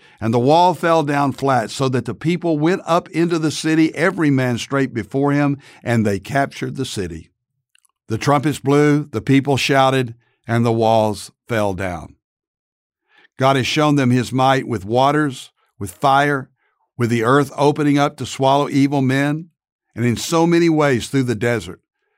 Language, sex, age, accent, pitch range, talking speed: English, male, 60-79, American, 115-145 Hz, 170 wpm